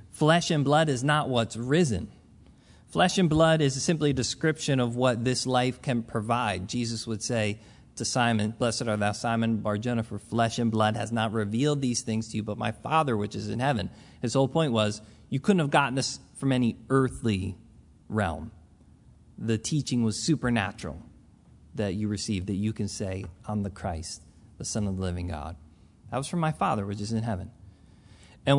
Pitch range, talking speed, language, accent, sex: 110-145 Hz, 195 wpm, English, American, male